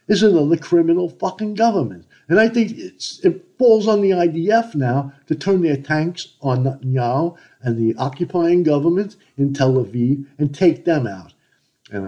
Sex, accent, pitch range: male, American, 135-210 Hz